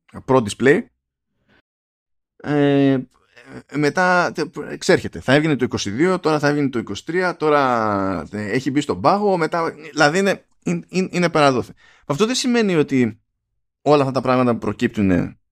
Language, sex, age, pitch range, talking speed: Greek, male, 20-39, 105-150 Hz, 140 wpm